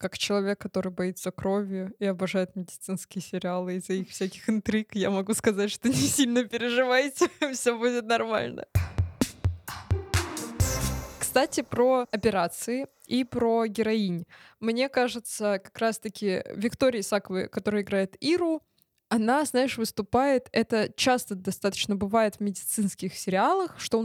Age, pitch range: 20-39, 195-245 Hz